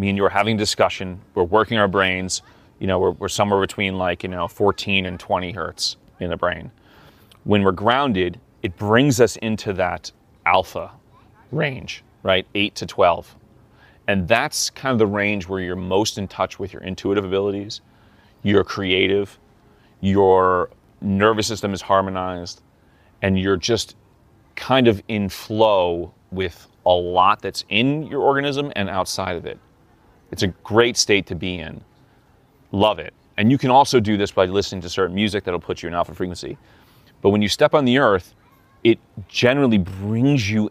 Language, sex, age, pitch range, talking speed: German, male, 30-49, 95-110 Hz, 170 wpm